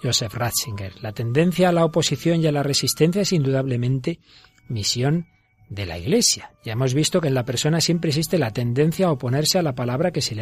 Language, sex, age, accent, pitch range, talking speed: Spanish, male, 40-59, Spanish, 120-155 Hz, 205 wpm